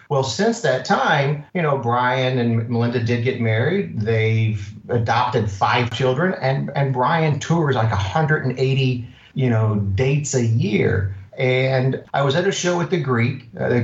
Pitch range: 115-135 Hz